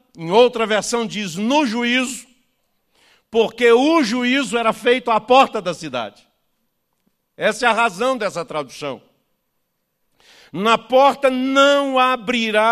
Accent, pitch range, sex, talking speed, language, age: Brazilian, 225-265 Hz, male, 120 wpm, Portuguese, 60-79